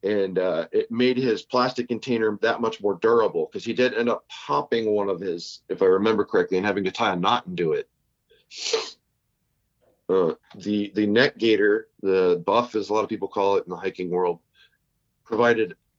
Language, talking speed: English, 195 wpm